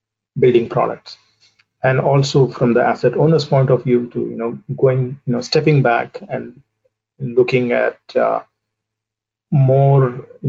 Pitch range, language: 110-145 Hz, English